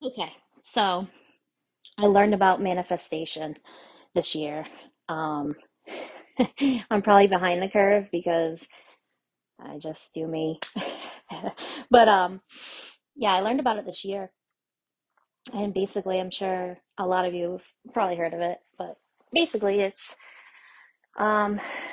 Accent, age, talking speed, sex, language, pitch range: American, 20-39, 125 wpm, female, English, 170-215 Hz